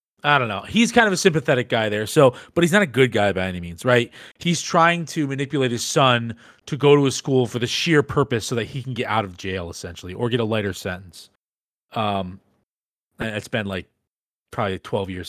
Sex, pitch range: male, 100-155 Hz